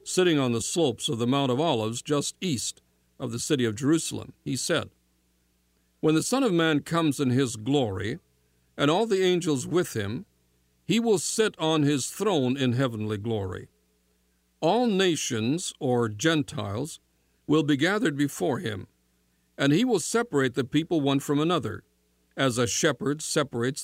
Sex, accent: male, American